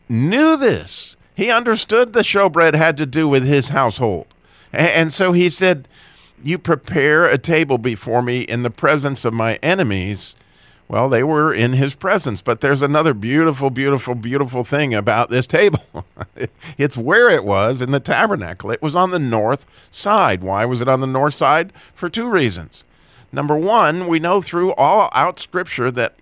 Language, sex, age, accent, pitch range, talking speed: English, male, 50-69, American, 115-155 Hz, 175 wpm